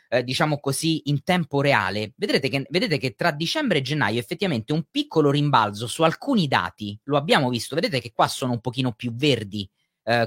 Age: 30-49